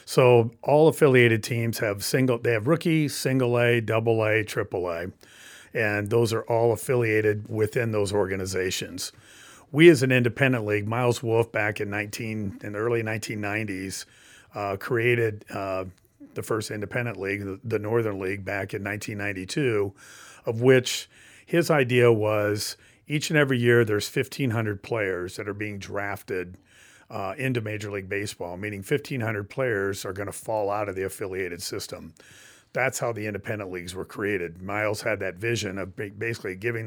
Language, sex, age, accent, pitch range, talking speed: English, male, 40-59, American, 100-120 Hz, 160 wpm